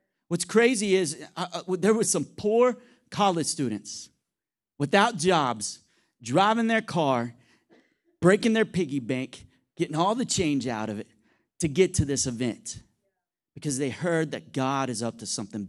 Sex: male